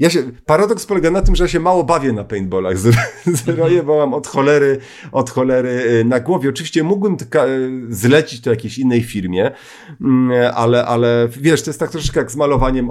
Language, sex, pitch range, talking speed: Polish, male, 120-165 Hz, 200 wpm